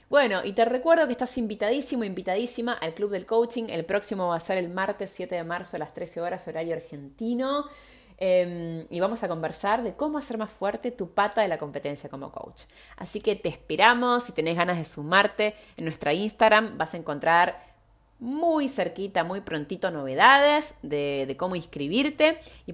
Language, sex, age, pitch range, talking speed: Spanish, female, 20-39, 160-220 Hz, 185 wpm